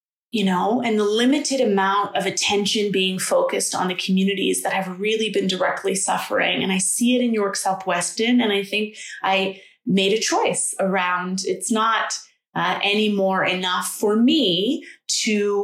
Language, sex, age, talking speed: English, female, 20-39, 160 wpm